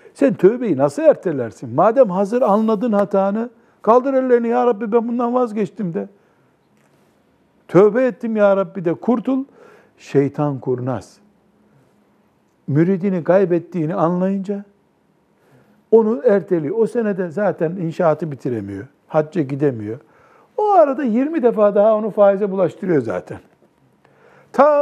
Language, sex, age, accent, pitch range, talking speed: Turkish, male, 60-79, native, 145-220 Hz, 110 wpm